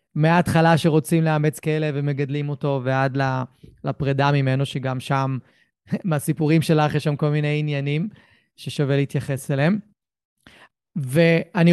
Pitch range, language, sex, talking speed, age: 145-195 Hz, Hebrew, male, 115 wpm, 30-49